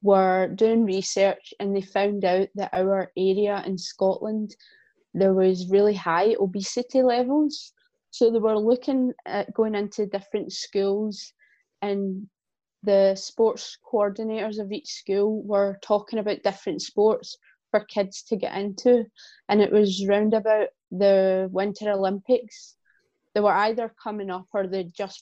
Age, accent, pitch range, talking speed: 20-39, British, 195-220 Hz, 145 wpm